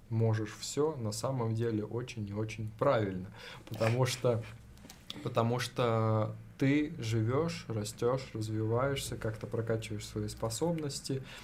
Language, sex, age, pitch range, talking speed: Russian, male, 20-39, 110-130 Hz, 110 wpm